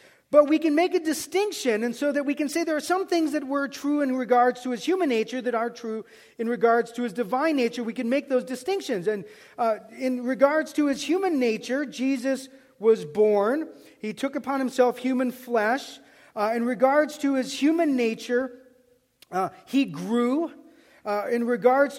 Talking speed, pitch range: 190 wpm, 240-275 Hz